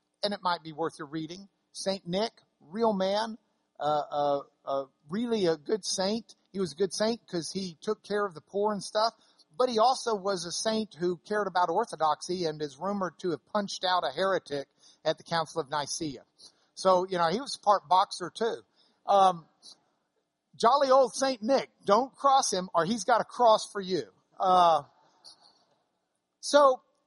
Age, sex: 50-69, male